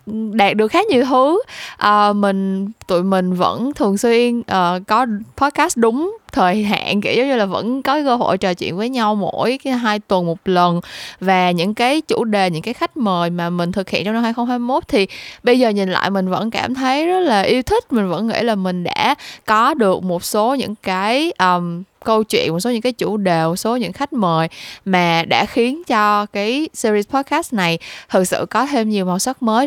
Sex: female